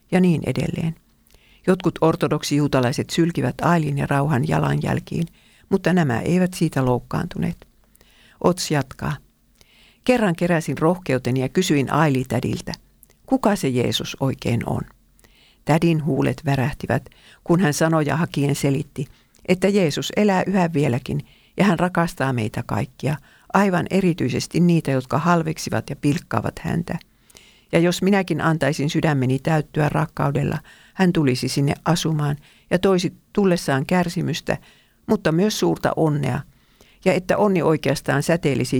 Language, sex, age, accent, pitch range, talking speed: Finnish, female, 50-69, native, 135-175 Hz, 120 wpm